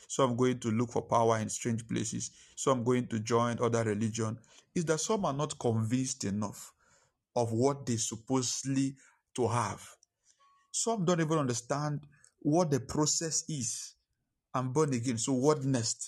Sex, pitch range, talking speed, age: male, 115-150 Hz, 165 wpm, 50-69